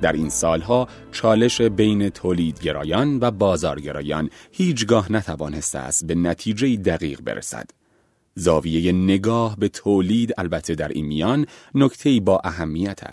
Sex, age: male, 30-49